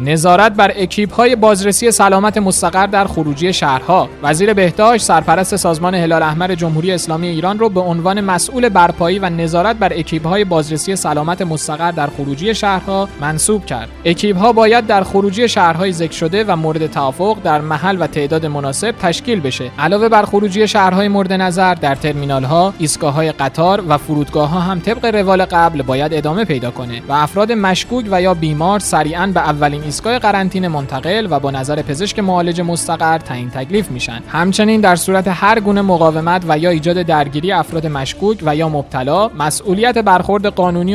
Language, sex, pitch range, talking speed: Persian, male, 145-195 Hz, 170 wpm